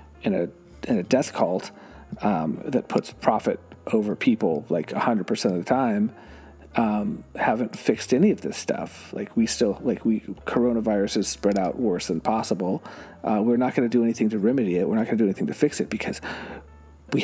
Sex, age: male, 40-59